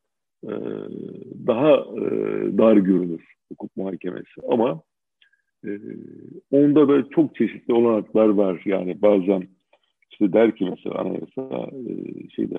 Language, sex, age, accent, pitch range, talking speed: Turkish, male, 50-69, native, 95-115 Hz, 95 wpm